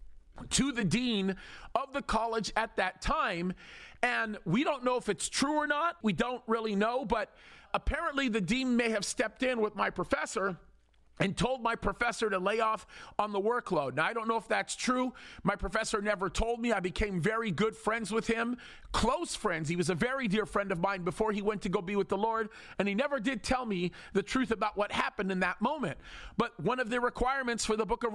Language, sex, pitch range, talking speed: English, male, 205-250 Hz, 220 wpm